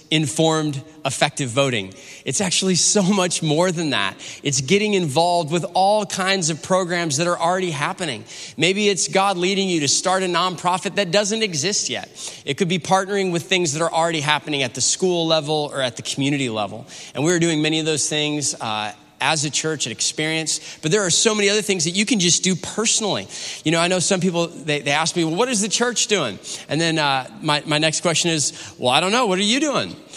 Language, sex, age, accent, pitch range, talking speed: English, male, 20-39, American, 155-205 Hz, 225 wpm